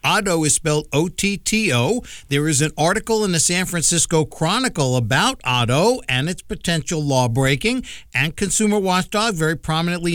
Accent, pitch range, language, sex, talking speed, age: American, 150-210 Hz, English, male, 150 wpm, 50-69